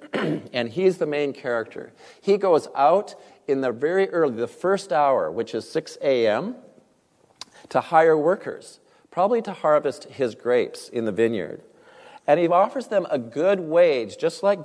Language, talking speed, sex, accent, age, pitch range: English, 160 wpm, male, American, 50-69, 125-200 Hz